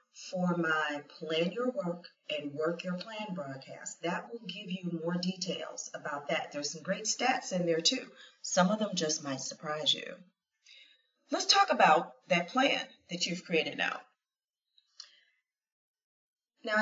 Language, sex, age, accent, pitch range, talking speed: English, female, 40-59, American, 165-245 Hz, 150 wpm